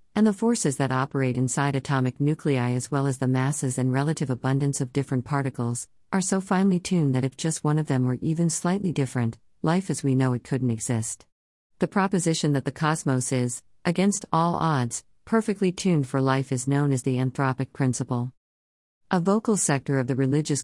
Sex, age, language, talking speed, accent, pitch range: female, 50-69, English, 190 wpm, American, 130-160 Hz